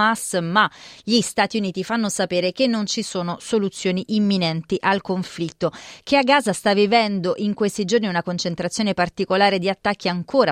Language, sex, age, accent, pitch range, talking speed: Italian, female, 30-49, native, 125-205 Hz, 160 wpm